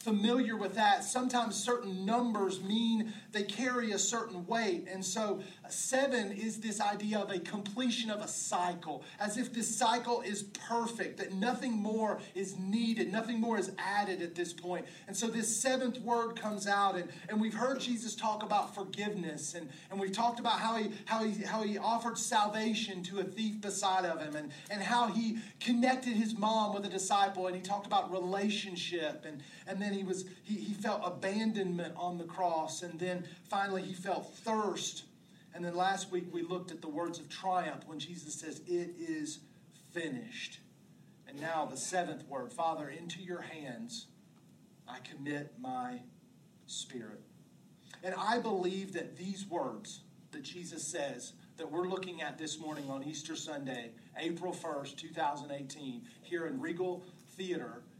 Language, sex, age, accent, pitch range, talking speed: English, male, 40-59, American, 170-215 Hz, 170 wpm